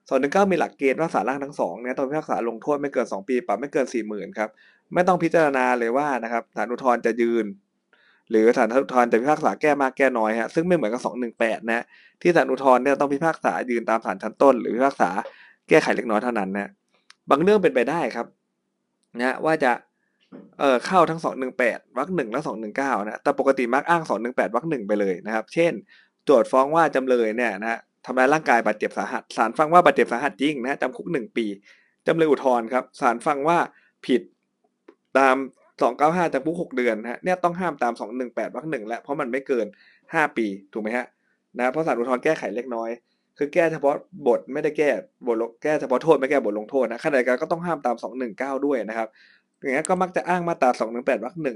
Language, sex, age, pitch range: Thai, male, 20-39, 115-150 Hz